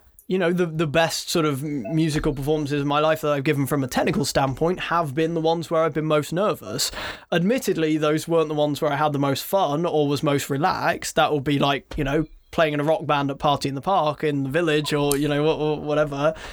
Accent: British